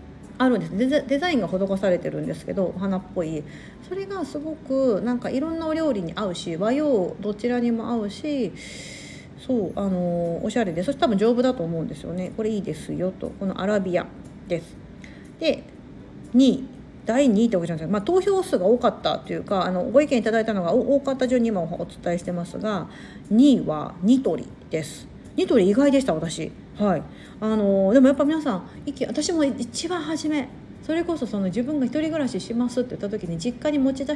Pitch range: 180-270 Hz